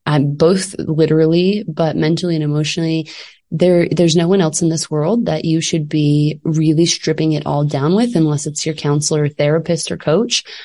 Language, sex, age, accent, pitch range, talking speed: English, female, 20-39, American, 155-180 Hz, 180 wpm